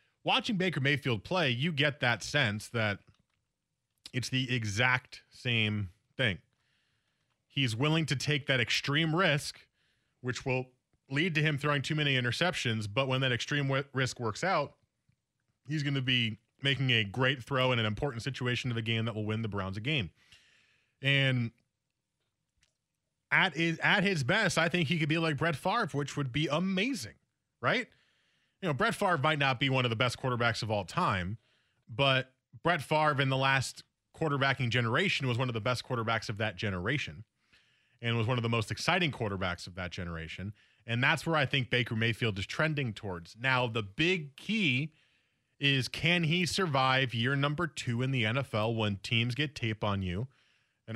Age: 30-49